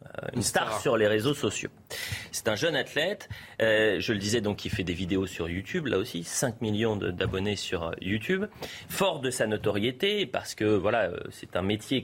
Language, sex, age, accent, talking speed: French, male, 30-49, French, 195 wpm